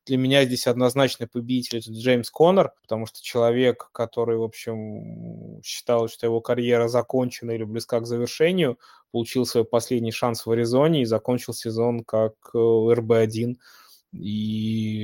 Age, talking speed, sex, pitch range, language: 20-39, 140 wpm, male, 115-125 Hz, Russian